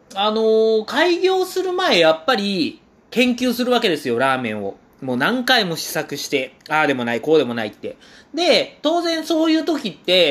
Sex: male